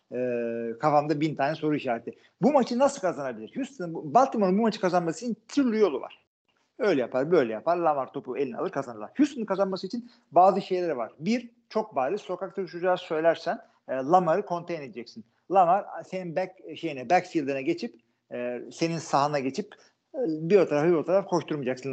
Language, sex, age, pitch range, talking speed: Turkish, male, 50-69, 140-210 Hz, 160 wpm